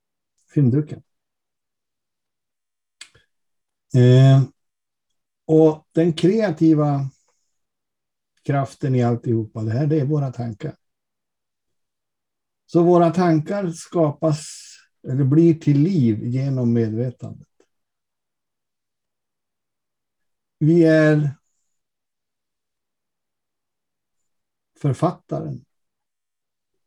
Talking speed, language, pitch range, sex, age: 60 wpm, Swedish, 120-160 Hz, male, 60-79